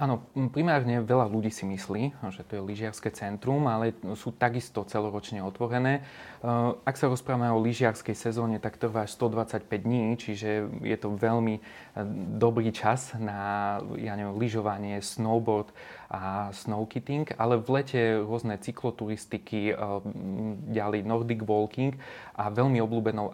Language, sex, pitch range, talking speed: Slovak, male, 105-120 Hz, 130 wpm